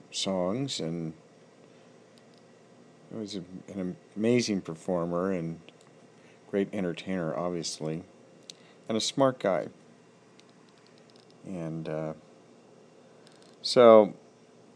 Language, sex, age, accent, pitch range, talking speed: English, male, 50-69, American, 85-105 Hz, 75 wpm